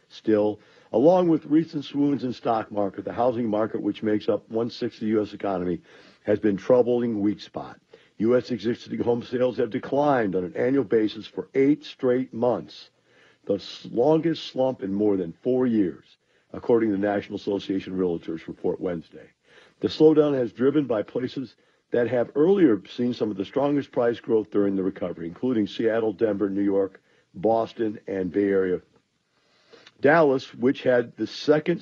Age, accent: 50-69, American